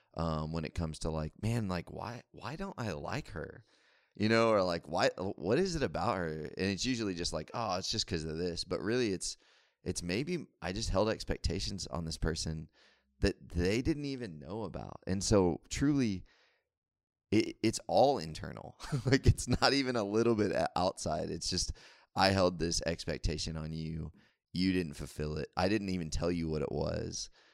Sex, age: male, 20-39